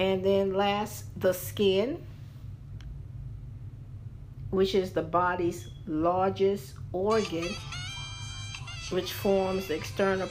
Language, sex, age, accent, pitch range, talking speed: English, female, 50-69, American, 120-180 Hz, 85 wpm